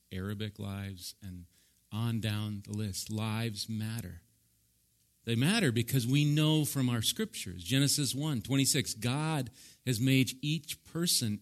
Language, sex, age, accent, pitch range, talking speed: English, male, 40-59, American, 115-160 Hz, 130 wpm